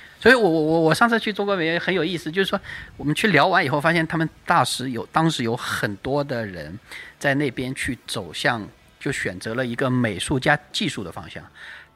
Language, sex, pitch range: Chinese, male, 110-155 Hz